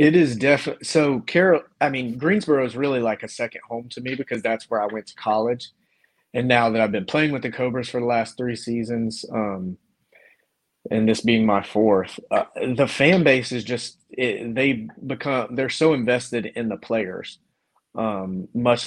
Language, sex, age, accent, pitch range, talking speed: English, male, 30-49, American, 110-125 Hz, 200 wpm